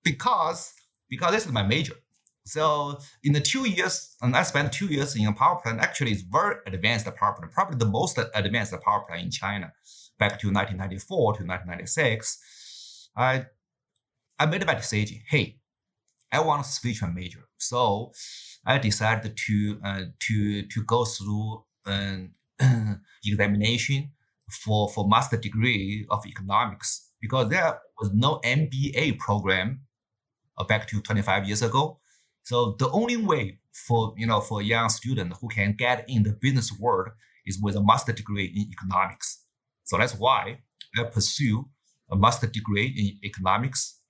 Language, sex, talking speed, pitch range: English, male, 155 wpm, 105-125 Hz